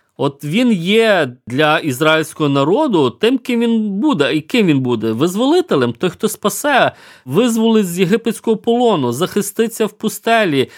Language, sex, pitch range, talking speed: Ukrainian, male, 130-185 Hz, 140 wpm